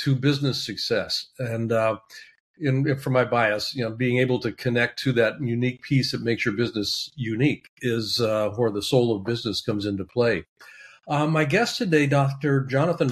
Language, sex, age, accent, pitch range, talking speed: English, male, 50-69, American, 115-145 Hz, 185 wpm